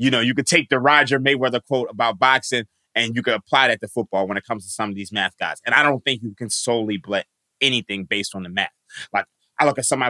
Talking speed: 265 wpm